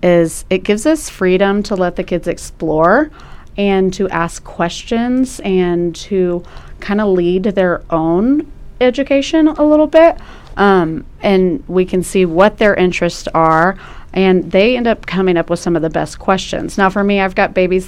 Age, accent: 30-49, American